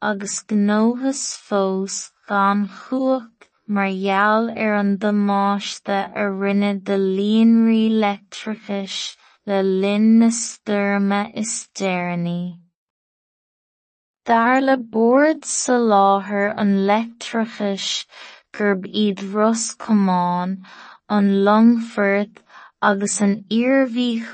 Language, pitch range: English, 195-225 Hz